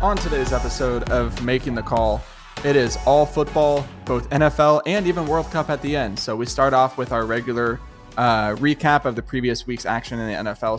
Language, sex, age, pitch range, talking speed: English, male, 20-39, 115-135 Hz, 205 wpm